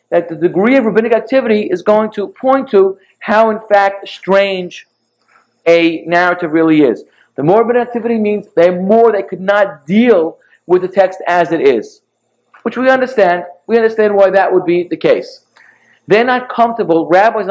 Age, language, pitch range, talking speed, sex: 40-59, English, 175-220 Hz, 175 wpm, male